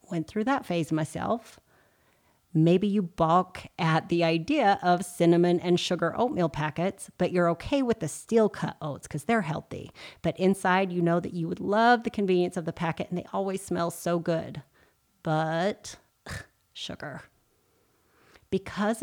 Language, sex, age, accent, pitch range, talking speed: English, female, 30-49, American, 170-205 Hz, 160 wpm